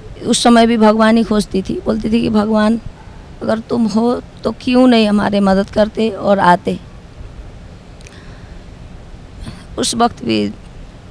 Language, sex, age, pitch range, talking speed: Hindi, female, 20-39, 185-220 Hz, 135 wpm